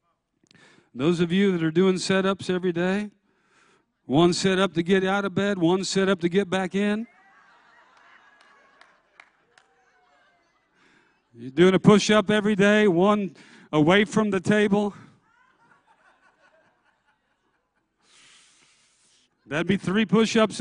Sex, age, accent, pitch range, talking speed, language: male, 50-69, American, 165-205 Hz, 110 wpm, English